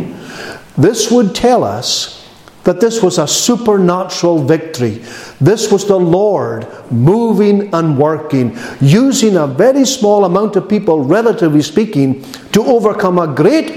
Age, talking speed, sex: 50-69, 130 wpm, male